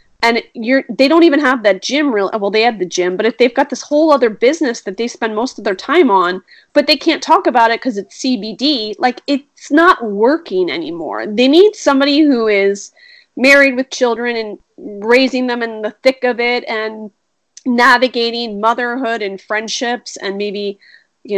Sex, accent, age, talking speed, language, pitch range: female, American, 30-49, 190 wpm, English, 195-265 Hz